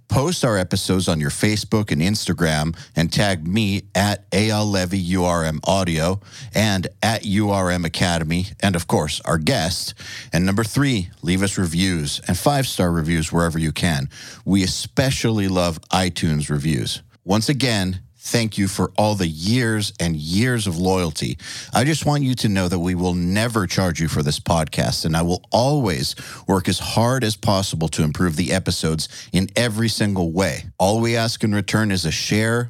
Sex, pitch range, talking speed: male, 90-115 Hz, 170 wpm